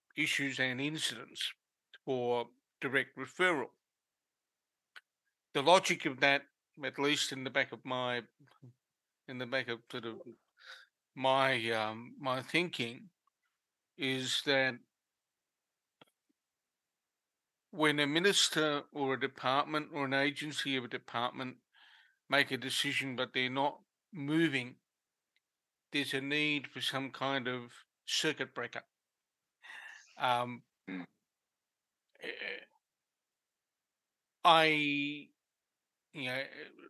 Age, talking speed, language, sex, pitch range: 50-69, 100 wpm, English, male, 130-150 Hz